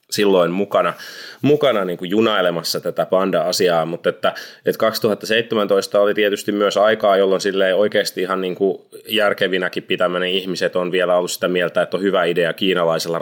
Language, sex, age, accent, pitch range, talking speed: Finnish, male, 20-39, native, 85-105 Hz, 145 wpm